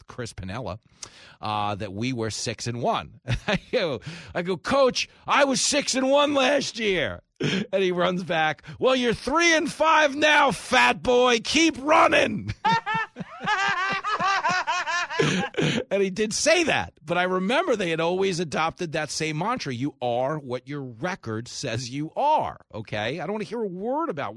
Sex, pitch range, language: male, 130-215 Hz, English